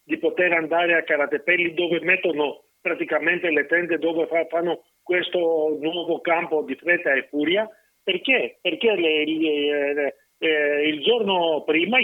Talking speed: 120 wpm